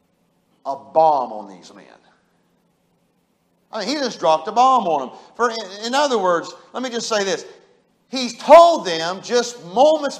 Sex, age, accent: male, 50-69, American